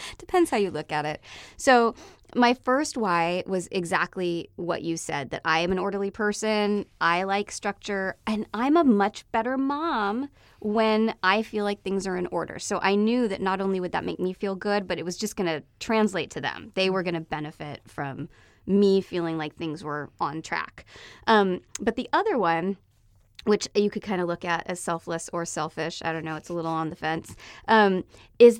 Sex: female